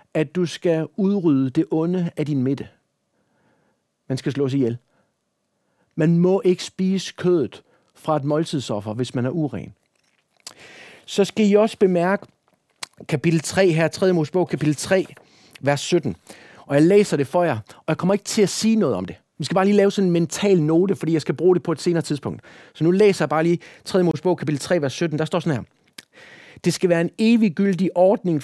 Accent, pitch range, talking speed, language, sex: native, 150-185 Hz, 200 wpm, Danish, male